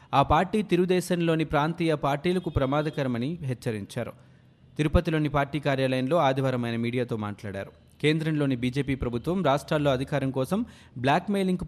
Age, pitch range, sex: 30-49, 130-165 Hz, male